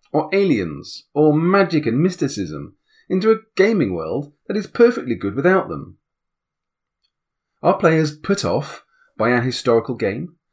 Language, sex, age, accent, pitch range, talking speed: English, male, 30-49, British, 125-180 Hz, 135 wpm